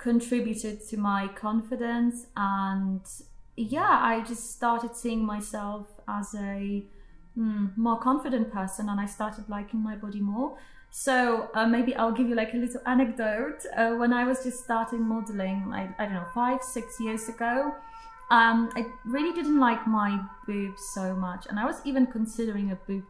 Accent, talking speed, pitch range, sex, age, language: British, 165 wpm, 205-250 Hz, female, 20-39, English